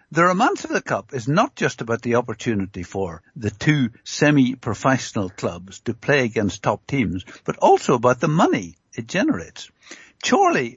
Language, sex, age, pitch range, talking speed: English, male, 60-79, 115-160 Hz, 160 wpm